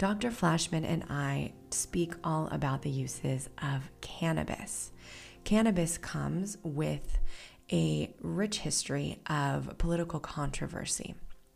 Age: 20-39